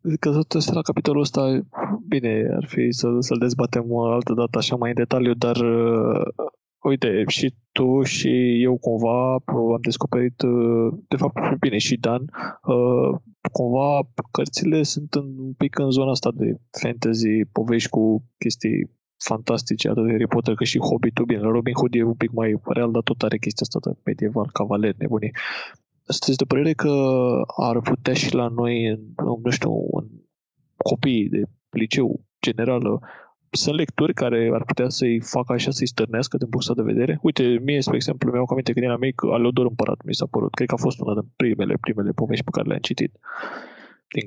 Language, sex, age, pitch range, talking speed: Romanian, male, 20-39, 115-140 Hz, 180 wpm